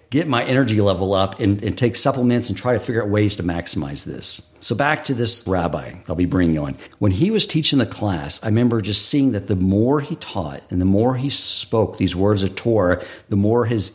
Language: English